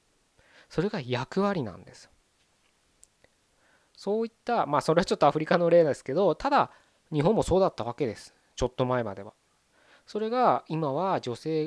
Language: Japanese